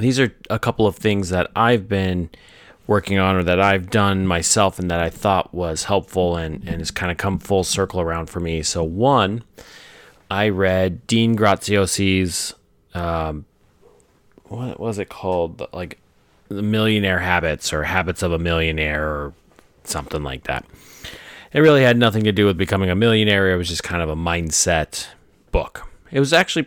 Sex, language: male, English